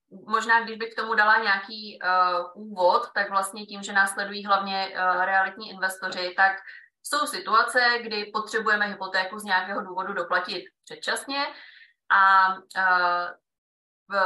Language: Czech